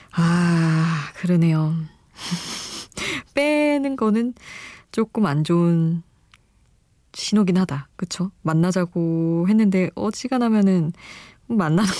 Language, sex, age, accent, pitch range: Korean, female, 20-39, native, 160-215 Hz